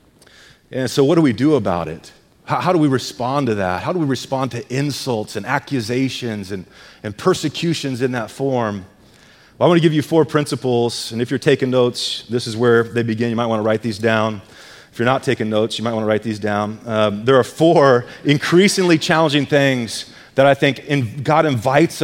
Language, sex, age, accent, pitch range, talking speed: English, male, 30-49, American, 115-150 Hz, 215 wpm